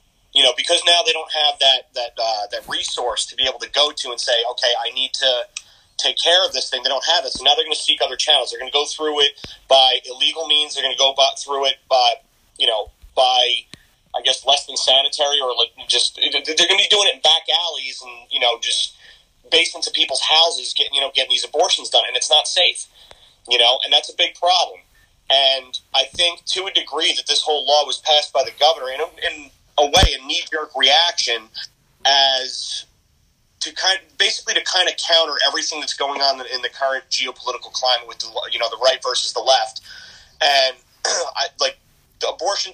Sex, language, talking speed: male, English, 220 wpm